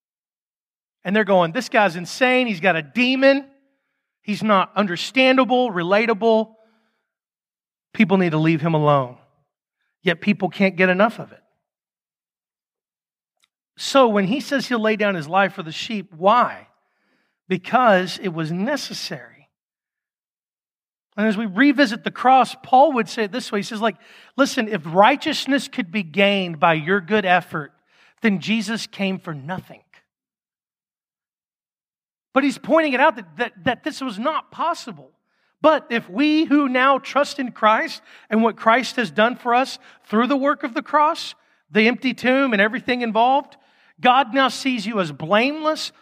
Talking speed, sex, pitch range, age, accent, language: 155 wpm, male, 185-255 Hz, 40-59, American, English